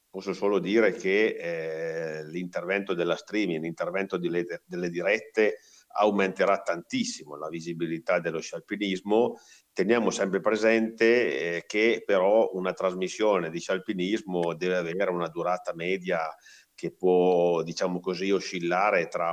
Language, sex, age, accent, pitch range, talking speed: Italian, male, 50-69, native, 85-120 Hz, 120 wpm